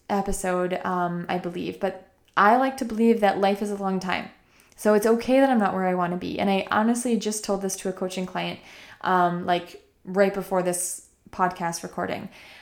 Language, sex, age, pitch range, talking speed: English, female, 20-39, 185-215 Hz, 205 wpm